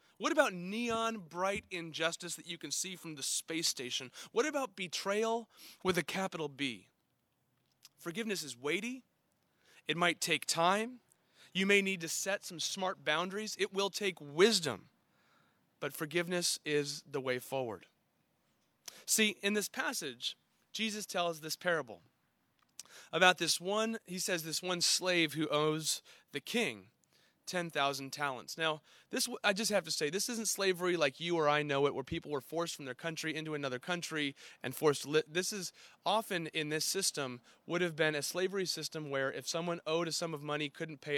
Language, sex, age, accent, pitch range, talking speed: English, male, 30-49, American, 150-190 Hz, 175 wpm